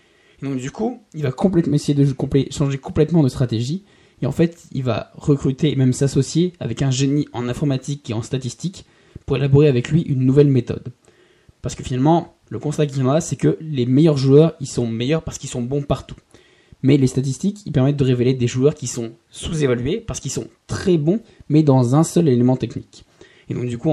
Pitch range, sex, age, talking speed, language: 120-150 Hz, male, 20-39, 210 wpm, French